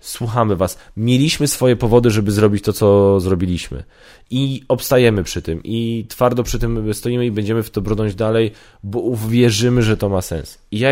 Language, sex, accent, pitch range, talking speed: Polish, male, native, 95-120 Hz, 180 wpm